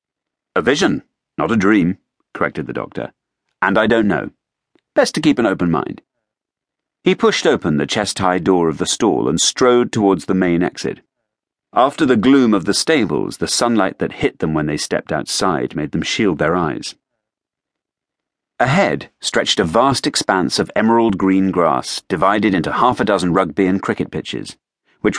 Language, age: English, 40-59